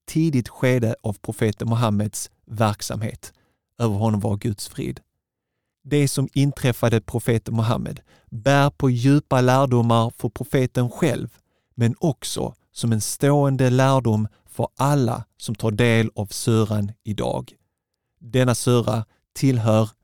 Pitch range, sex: 110-135 Hz, male